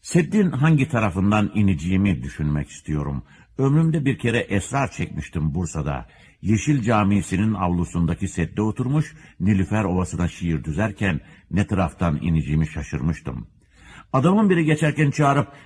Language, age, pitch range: Turkish, 60-79, 80-125 Hz